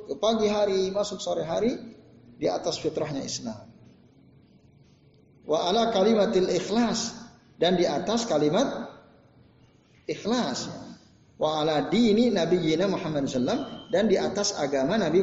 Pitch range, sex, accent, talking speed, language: 155-225 Hz, male, native, 115 wpm, Indonesian